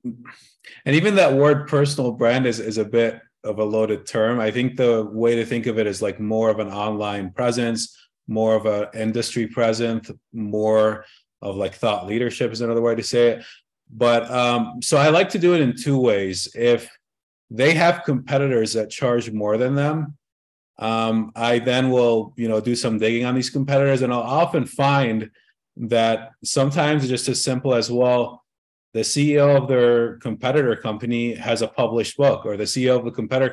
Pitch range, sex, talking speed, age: 110-130 Hz, male, 185 wpm, 30-49